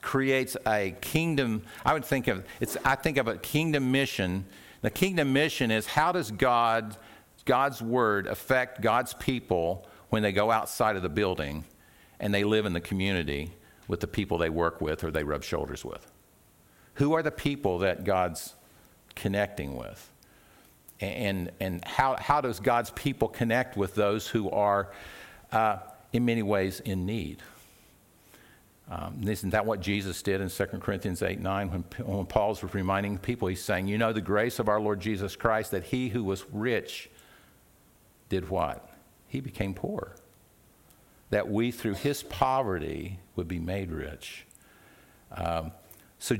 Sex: male